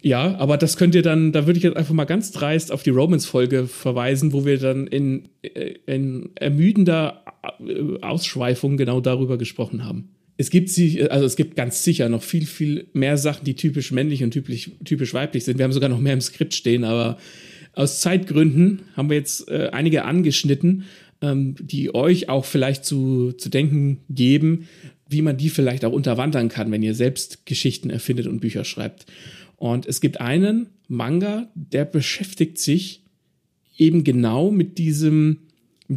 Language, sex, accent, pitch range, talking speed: German, male, German, 130-165 Hz, 170 wpm